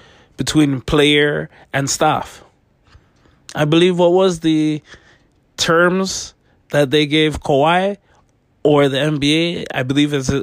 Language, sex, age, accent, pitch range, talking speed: English, male, 20-39, American, 125-160 Hz, 115 wpm